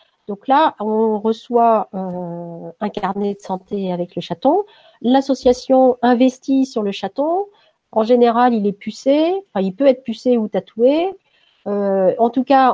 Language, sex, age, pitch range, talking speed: French, female, 50-69, 210-265 Hz, 150 wpm